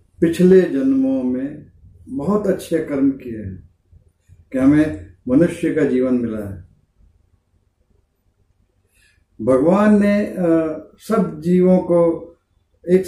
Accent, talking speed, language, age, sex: native, 100 wpm, Hindi, 50-69, male